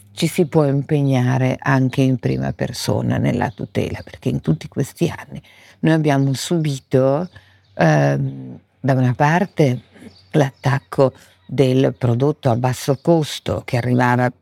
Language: Italian